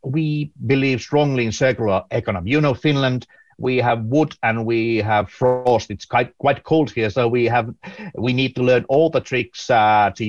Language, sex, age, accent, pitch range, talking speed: English, male, 50-69, Finnish, 105-135 Hz, 190 wpm